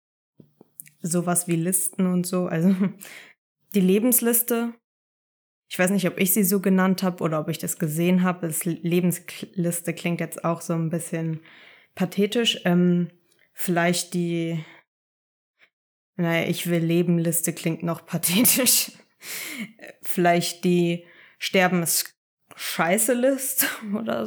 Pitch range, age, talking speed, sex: 165-185 Hz, 20-39, 110 wpm, female